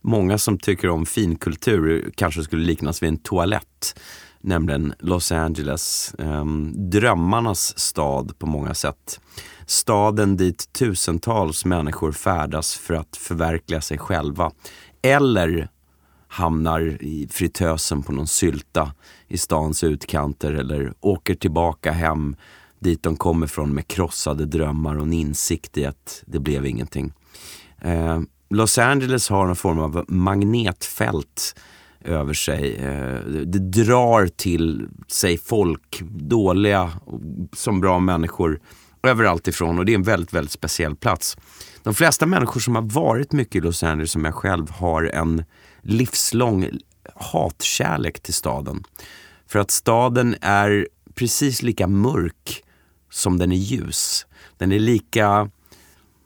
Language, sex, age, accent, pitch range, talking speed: Swedish, male, 30-49, native, 75-100 Hz, 130 wpm